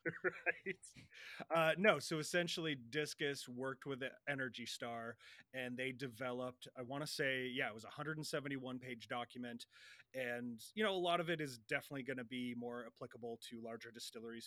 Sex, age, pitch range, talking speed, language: male, 30-49, 115-135 Hz, 170 wpm, English